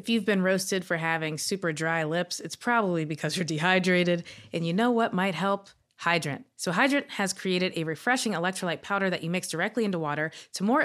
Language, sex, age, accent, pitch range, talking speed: English, female, 30-49, American, 175-220 Hz, 205 wpm